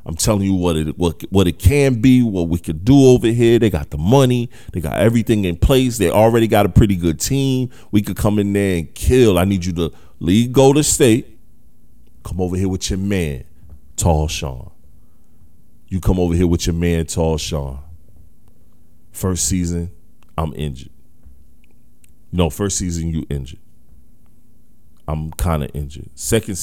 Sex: male